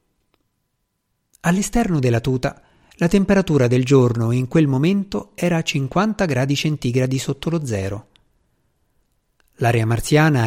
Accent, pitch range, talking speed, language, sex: native, 120-170 Hz, 115 wpm, Italian, male